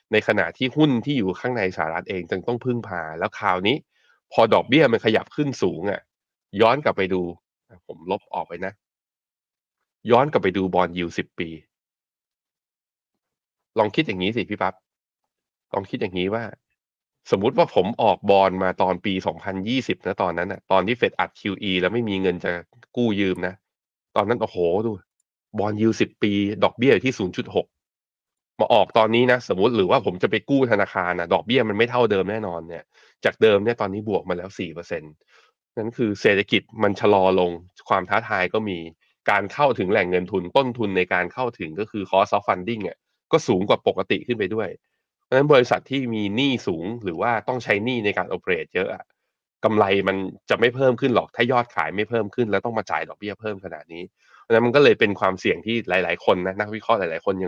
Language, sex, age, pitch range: Thai, male, 20-39, 95-120 Hz